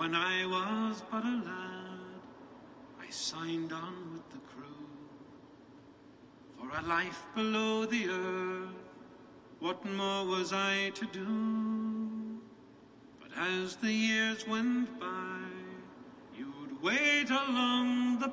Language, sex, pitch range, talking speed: English, male, 185-220 Hz, 110 wpm